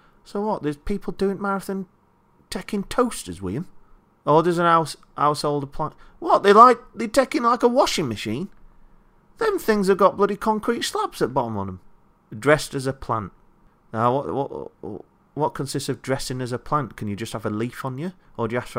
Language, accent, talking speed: English, British, 200 wpm